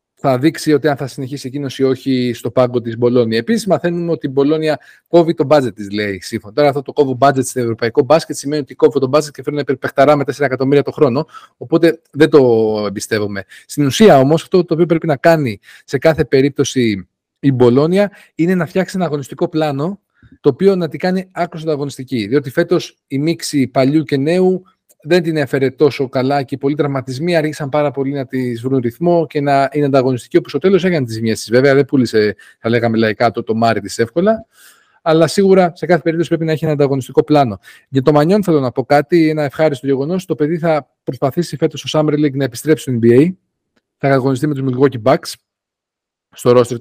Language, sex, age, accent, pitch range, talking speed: Greek, male, 30-49, native, 130-165 Hz, 220 wpm